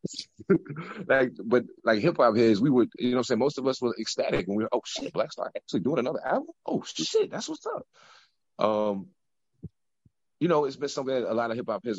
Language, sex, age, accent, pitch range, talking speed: English, male, 30-49, American, 90-130 Hz, 230 wpm